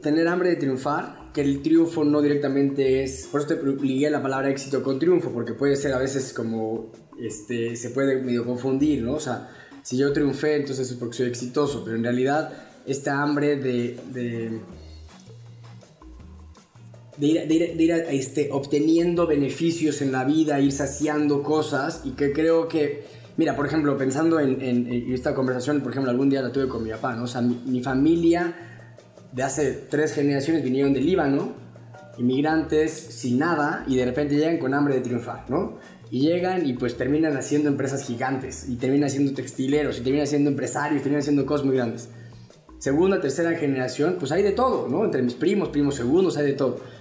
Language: Spanish